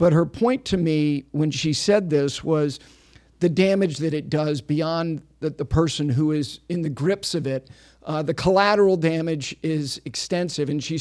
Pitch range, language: 155-190 Hz, English